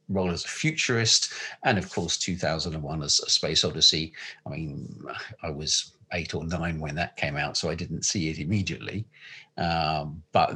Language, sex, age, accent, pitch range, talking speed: English, male, 50-69, British, 80-95 Hz, 175 wpm